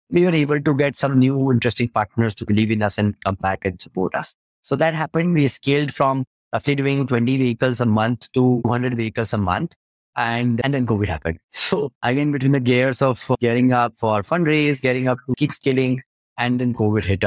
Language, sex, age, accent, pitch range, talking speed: English, male, 20-39, Indian, 120-155 Hz, 210 wpm